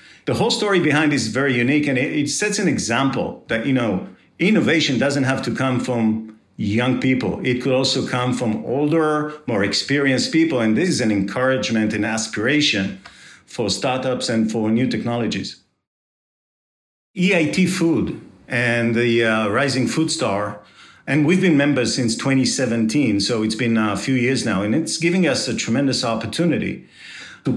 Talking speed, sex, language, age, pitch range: 165 wpm, male, English, 50-69, 110-145 Hz